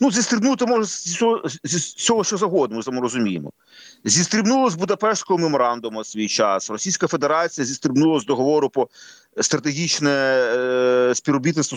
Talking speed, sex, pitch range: 160 wpm, male, 125-160 Hz